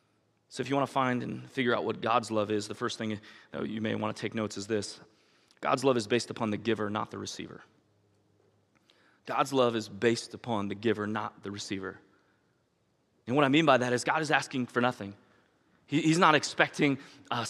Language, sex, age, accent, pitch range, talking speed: English, male, 30-49, American, 130-185 Hz, 205 wpm